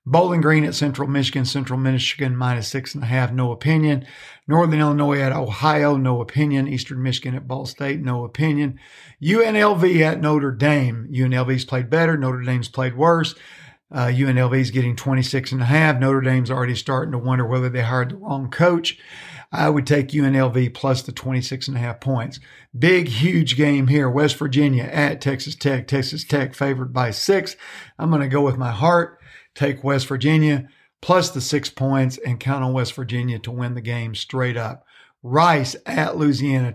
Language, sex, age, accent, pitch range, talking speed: English, male, 50-69, American, 130-150 Hz, 180 wpm